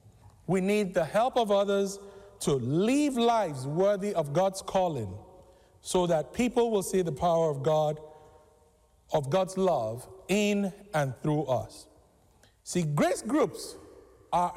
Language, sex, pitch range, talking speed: English, male, 155-210 Hz, 135 wpm